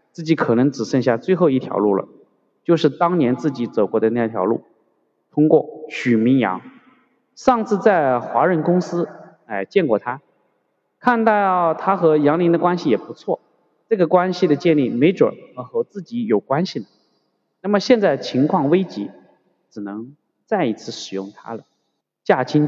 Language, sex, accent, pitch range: Chinese, male, native, 130-190 Hz